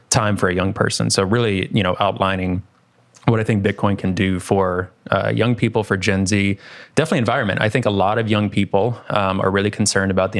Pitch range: 95-115 Hz